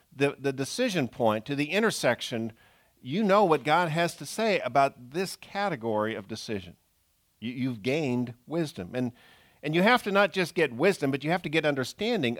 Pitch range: 110-165 Hz